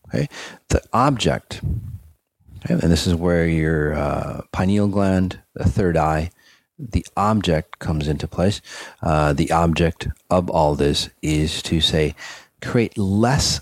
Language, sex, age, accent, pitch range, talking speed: English, male, 40-59, American, 80-100 Hz, 130 wpm